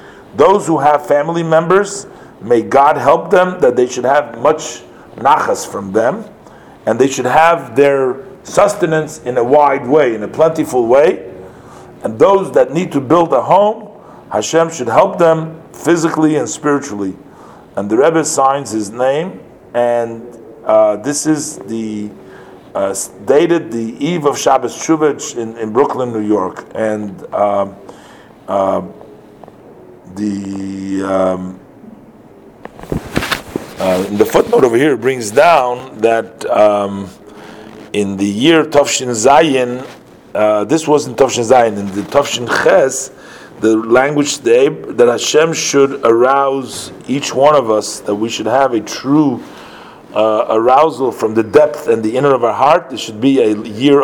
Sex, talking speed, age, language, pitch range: male, 145 wpm, 50-69, English, 110-155 Hz